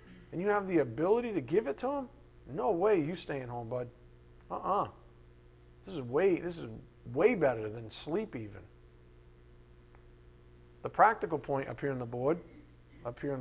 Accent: American